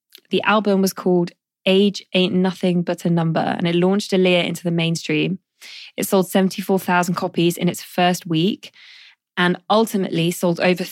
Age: 20-39